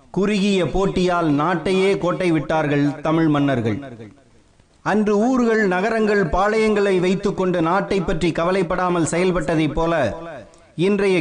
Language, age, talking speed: Tamil, 30-49, 100 wpm